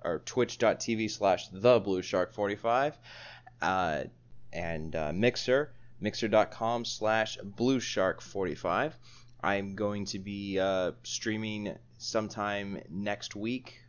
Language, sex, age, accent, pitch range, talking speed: English, male, 20-39, American, 100-120 Hz, 80 wpm